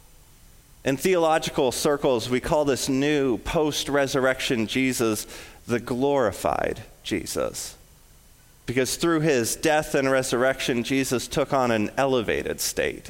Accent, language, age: American, English, 30-49